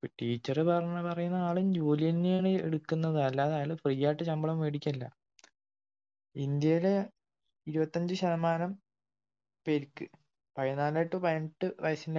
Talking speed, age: 105 wpm, 20-39